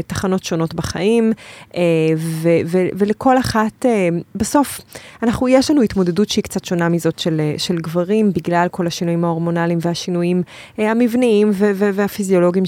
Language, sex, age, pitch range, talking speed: English, female, 20-39, 165-205 Hz, 135 wpm